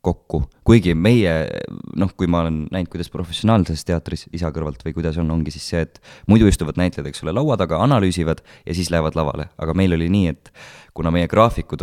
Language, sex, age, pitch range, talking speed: English, male, 20-39, 80-95 Hz, 180 wpm